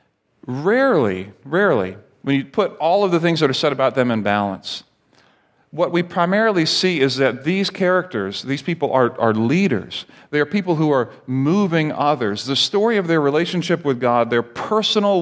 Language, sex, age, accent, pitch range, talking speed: English, male, 40-59, American, 130-175 Hz, 175 wpm